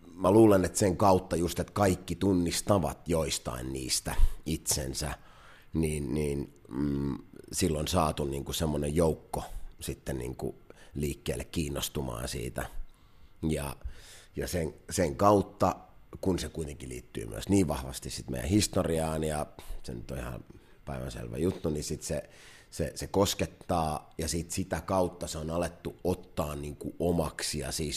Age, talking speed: 30-49, 140 wpm